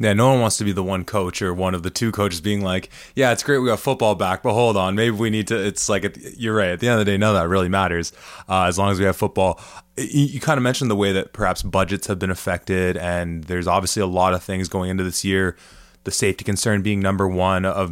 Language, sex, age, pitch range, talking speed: English, male, 20-39, 90-105 Hz, 280 wpm